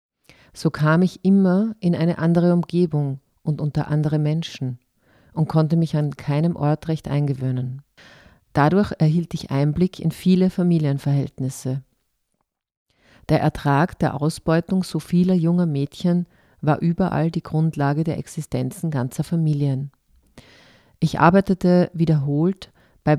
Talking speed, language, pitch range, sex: 120 wpm, German, 140-175 Hz, female